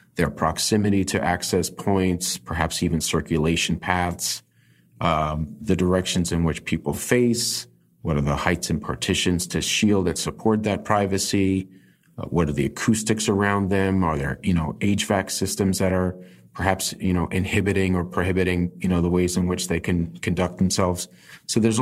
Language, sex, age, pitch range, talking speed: English, male, 30-49, 85-100 Hz, 170 wpm